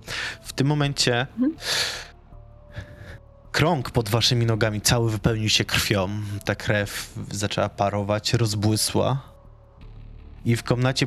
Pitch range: 105-125 Hz